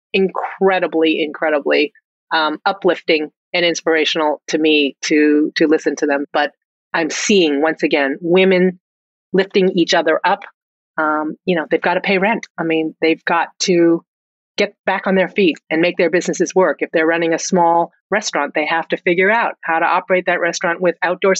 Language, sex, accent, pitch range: English, female, American, 160-185 Hz